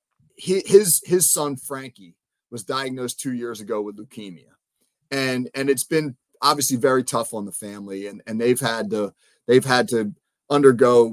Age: 30-49